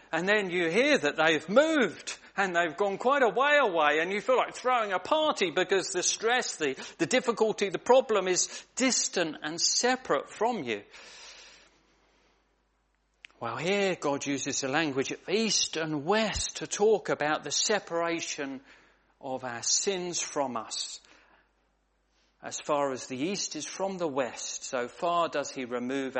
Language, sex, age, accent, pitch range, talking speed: English, male, 40-59, British, 140-205 Hz, 160 wpm